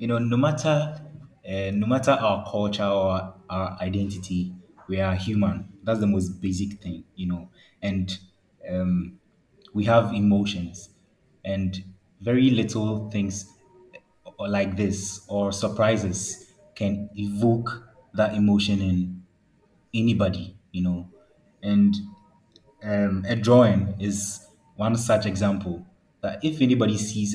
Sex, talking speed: male, 120 wpm